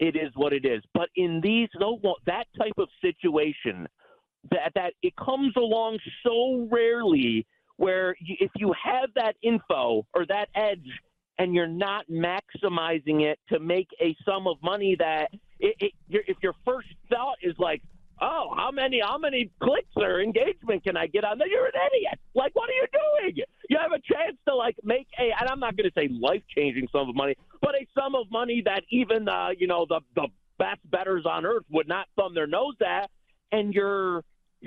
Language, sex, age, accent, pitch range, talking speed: English, male, 40-59, American, 180-270 Hz, 195 wpm